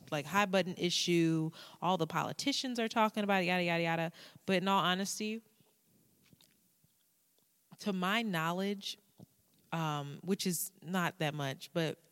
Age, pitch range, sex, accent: 20-39, 150-180 Hz, female, American